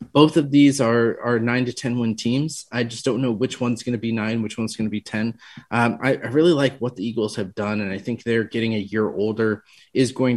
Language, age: English, 30-49